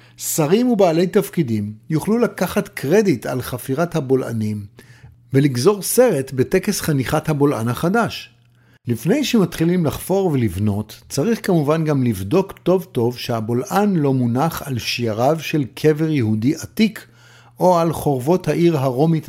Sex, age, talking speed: male, 50-69, 120 wpm